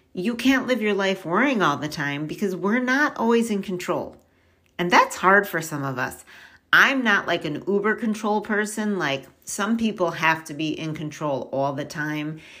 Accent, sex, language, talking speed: American, female, English, 190 wpm